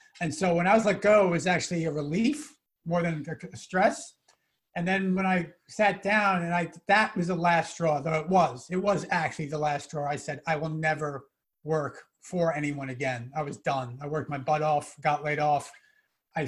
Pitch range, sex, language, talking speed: 155-200 Hz, male, English, 215 wpm